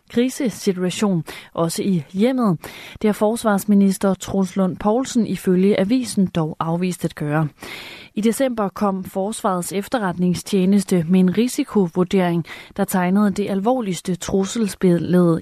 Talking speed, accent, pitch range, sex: 115 wpm, native, 175-215 Hz, female